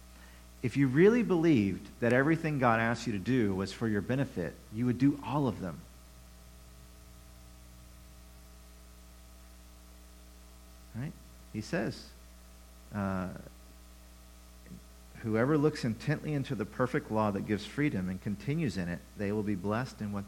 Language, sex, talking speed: English, male, 135 wpm